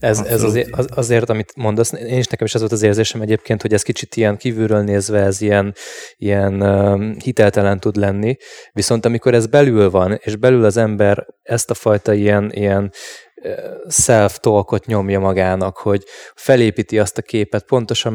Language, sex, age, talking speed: Hungarian, male, 20-39, 170 wpm